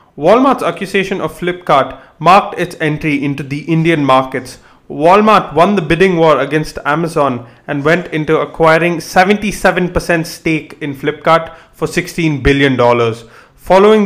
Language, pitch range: English, 140-175 Hz